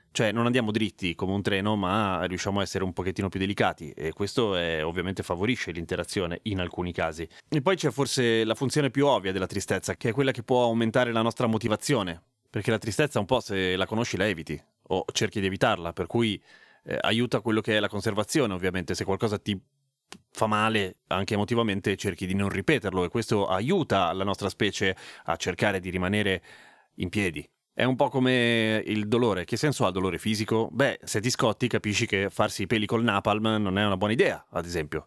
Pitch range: 95-120 Hz